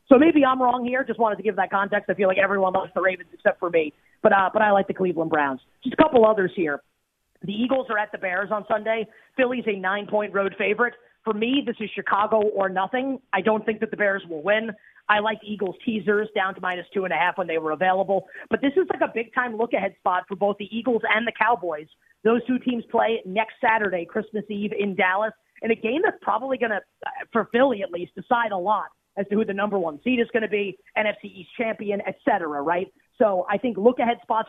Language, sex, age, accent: English, female, 30-49, American